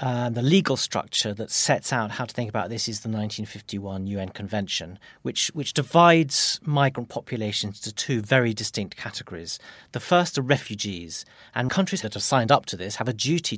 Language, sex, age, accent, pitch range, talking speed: English, male, 40-59, British, 105-145 Hz, 185 wpm